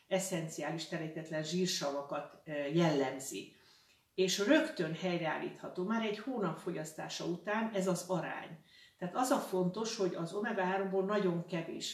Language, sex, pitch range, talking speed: Hungarian, female, 165-200 Hz, 120 wpm